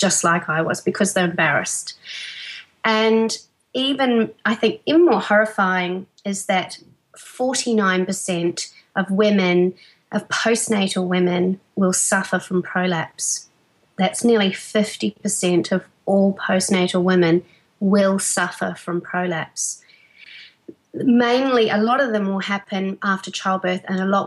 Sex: female